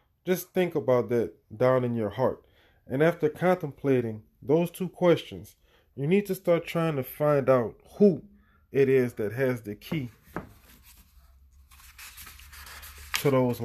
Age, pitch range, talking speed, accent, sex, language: 20-39, 105-140 Hz, 135 wpm, American, male, English